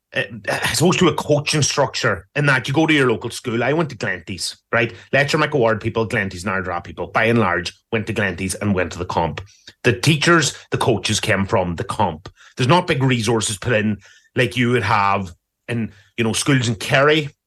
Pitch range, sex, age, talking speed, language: 110-135 Hz, male, 30-49, 210 wpm, English